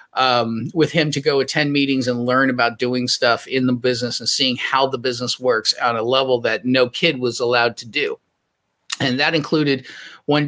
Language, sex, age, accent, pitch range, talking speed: English, male, 40-59, American, 130-170 Hz, 200 wpm